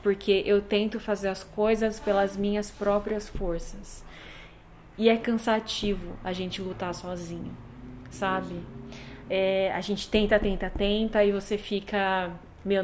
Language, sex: Portuguese, female